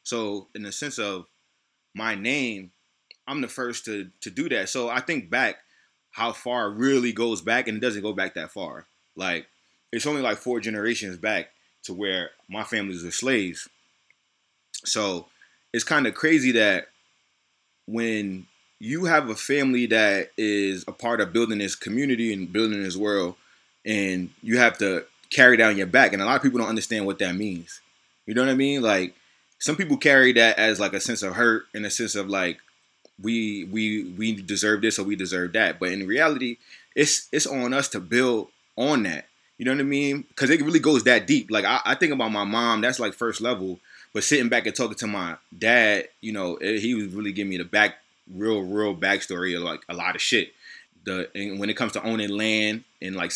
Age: 20-39